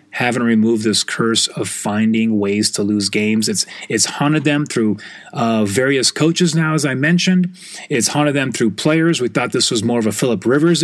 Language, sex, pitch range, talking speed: English, male, 120-175 Hz, 200 wpm